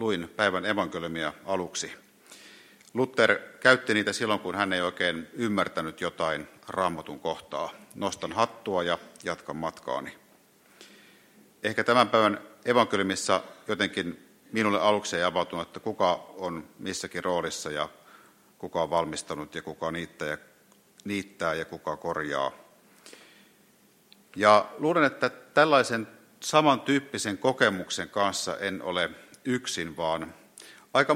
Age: 50-69